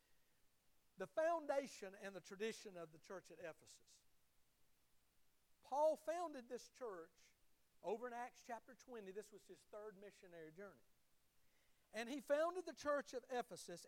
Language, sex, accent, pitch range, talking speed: English, male, American, 210-310 Hz, 140 wpm